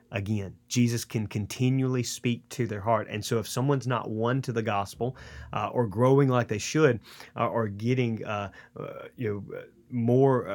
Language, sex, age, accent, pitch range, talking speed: English, male, 30-49, American, 105-125 Hz, 175 wpm